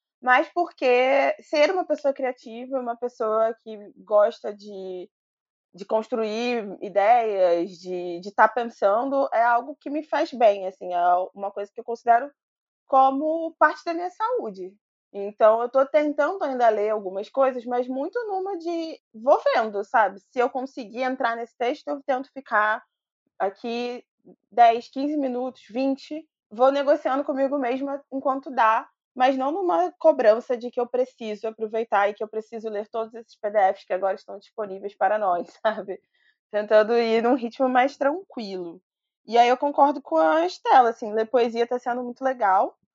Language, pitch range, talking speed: Portuguese, 215-280 Hz, 160 wpm